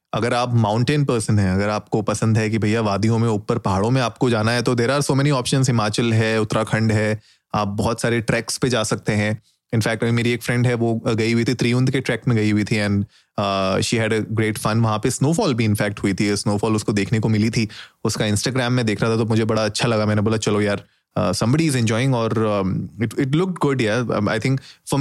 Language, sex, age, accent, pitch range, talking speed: Hindi, male, 30-49, native, 110-130 Hz, 245 wpm